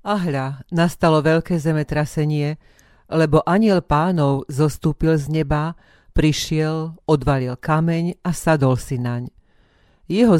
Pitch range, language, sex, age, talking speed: 140-170 Hz, Slovak, female, 40-59, 105 wpm